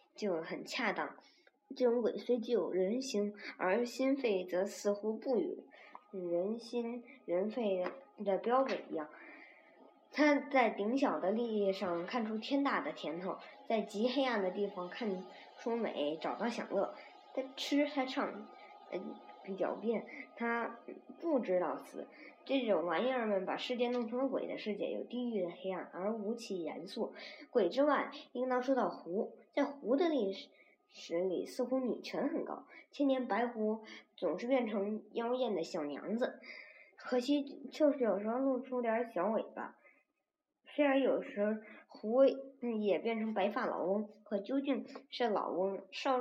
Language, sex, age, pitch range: Chinese, male, 20-39, 205-270 Hz